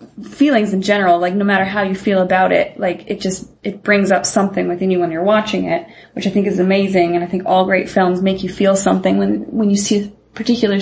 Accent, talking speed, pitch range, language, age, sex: American, 250 wpm, 175-205 Hz, English, 20-39, female